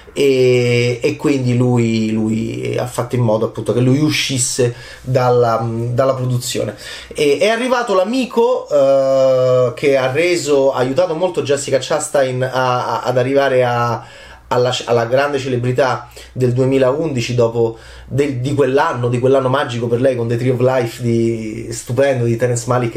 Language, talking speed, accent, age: Italian, 155 wpm, native, 30-49